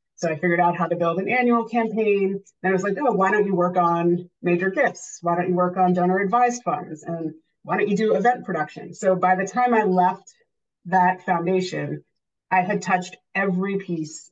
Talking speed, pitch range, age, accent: 210 wpm, 165-190 Hz, 30-49, American